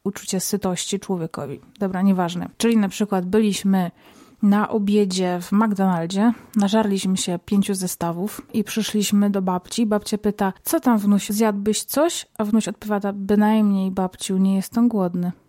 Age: 30-49